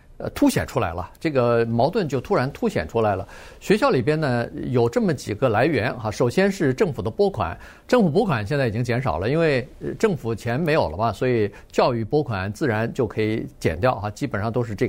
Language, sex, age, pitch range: Chinese, male, 50-69, 115-155 Hz